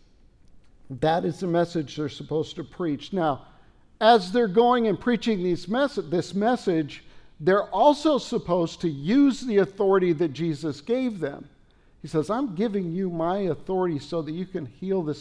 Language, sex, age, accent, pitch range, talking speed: English, male, 50-69, American, 160-220 Hz, 160 wpm